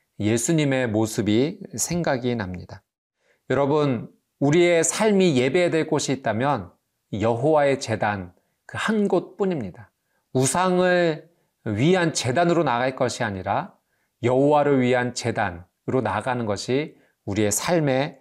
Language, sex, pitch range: Korean, male, 110-155 Hz